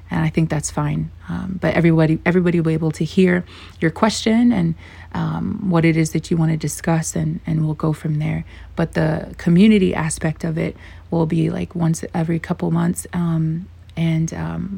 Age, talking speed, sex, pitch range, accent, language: 30-49, 195 wpm, female, 145-180 Hz, American, English